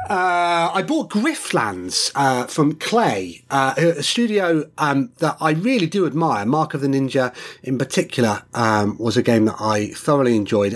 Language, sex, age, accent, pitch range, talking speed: English, male, 30-49, British, 135-190 Hz, 165 wpm